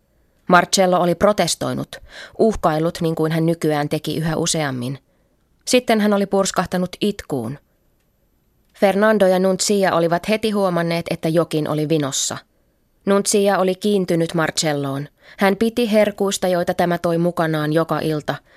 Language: Finnish